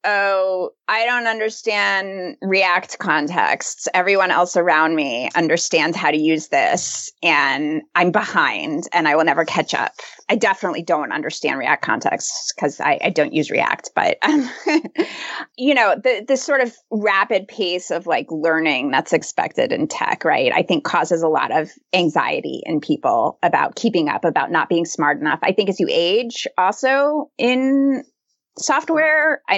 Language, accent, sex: English, American, female